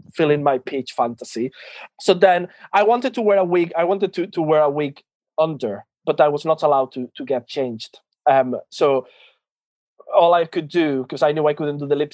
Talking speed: 220 wpm